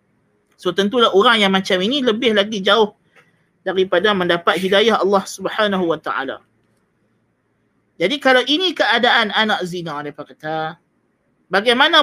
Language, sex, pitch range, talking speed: Malay, male, 195-260 Hz, 125 wpm